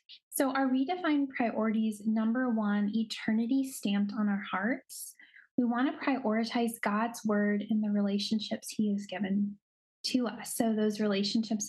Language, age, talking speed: English, 10-29, 145 wpm